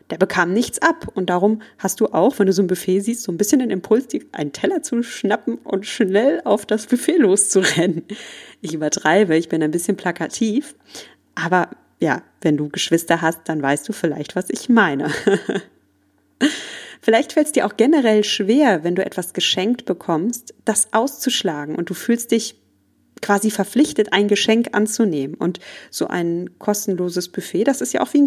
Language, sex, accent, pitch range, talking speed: German, female, German, 175-235 Hz, 180 wpm